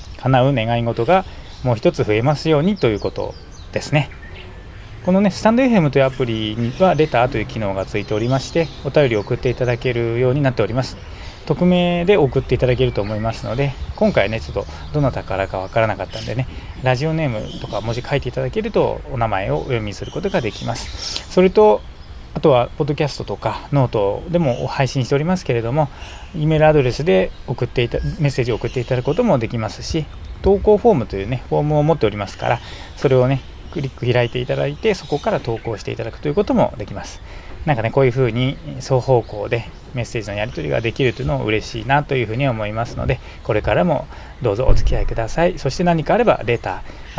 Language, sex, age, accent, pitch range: Japanese, male, 20-39, native, 110-150 Hz